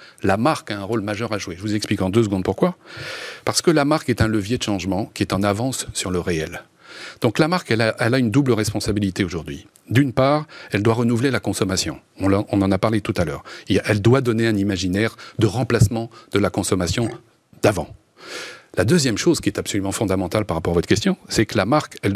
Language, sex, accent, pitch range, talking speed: French, male, French, 95-120 Hz, 220 wpm